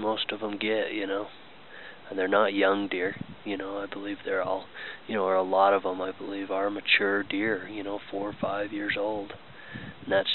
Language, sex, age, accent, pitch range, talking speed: English, male, 20-39, American, 100-110 Hz, 220 wpm